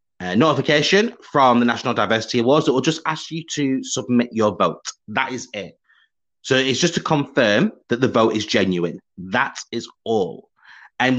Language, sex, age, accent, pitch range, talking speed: English, male, 30-49, British, 105-145 Hz, 180 wpm